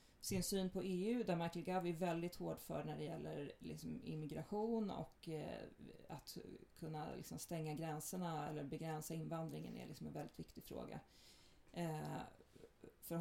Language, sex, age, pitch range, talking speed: Swedish, female, 30-49, 155-185 Hz, 145 wpm